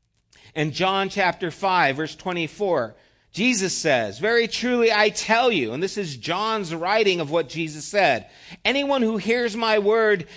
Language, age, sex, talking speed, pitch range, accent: English, 50-69, male, 155 wpm, 150-215 Hz, American